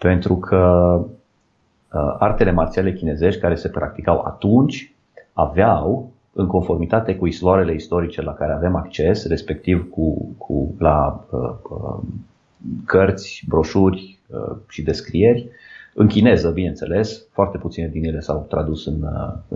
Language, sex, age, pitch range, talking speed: Romanian, male, 30-49, 80-105 Hz, 130 wpm